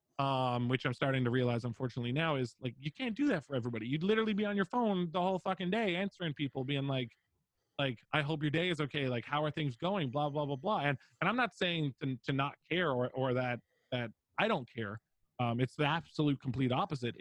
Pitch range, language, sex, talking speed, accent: 120-150 Hz, English, male, 235 wpm, American